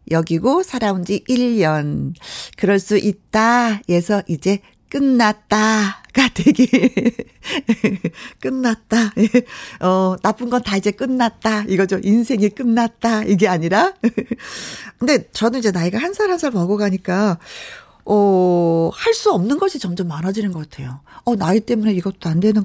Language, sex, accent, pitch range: Korean, female, native, 190-255 Hz